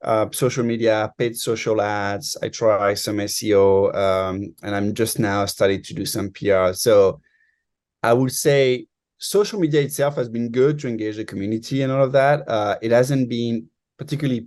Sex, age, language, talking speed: male, 30-49, English, 180 wpm